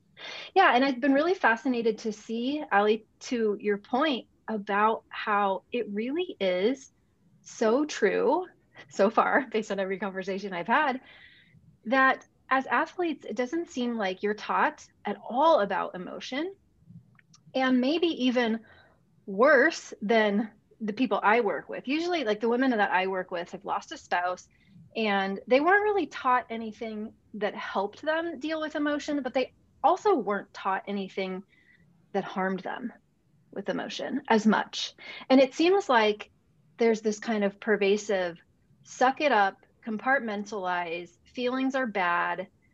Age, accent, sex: 30-49, American, female